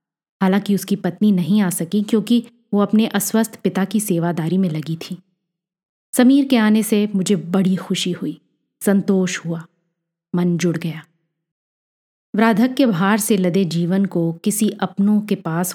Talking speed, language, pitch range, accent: 150 wpm, Hindi, 175-220 Hz, native